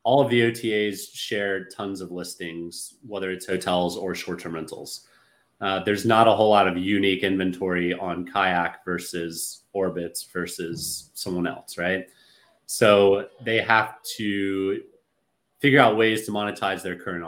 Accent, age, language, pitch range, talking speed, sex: American, 30-49, English, 90-110 Hz, 145 wpm, male